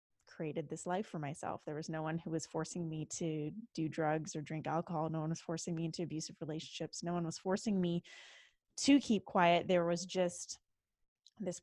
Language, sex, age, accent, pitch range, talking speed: English, female, 20-39, American, 160-190 Hz, 200 wpm